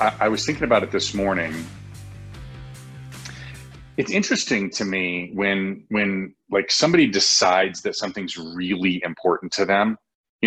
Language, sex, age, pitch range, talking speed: English, male, 30-49, 90-115 Hz, 130 wpm